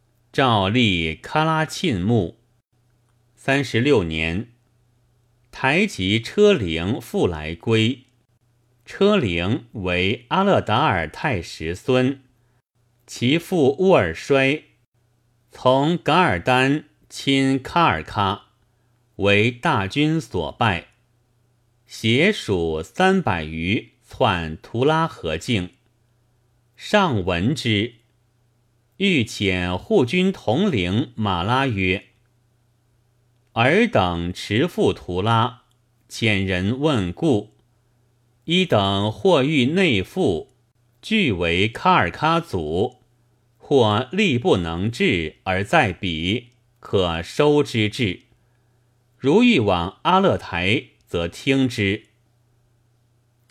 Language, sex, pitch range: Chinese, male, 105-130 Hz